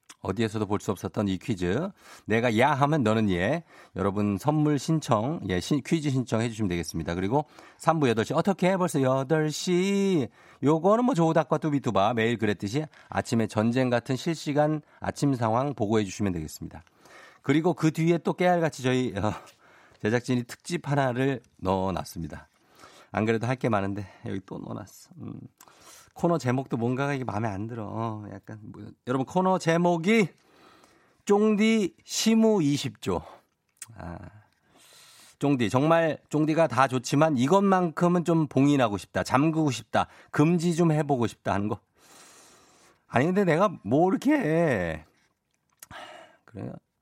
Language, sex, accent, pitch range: Korean, male, native, 110-165 Hz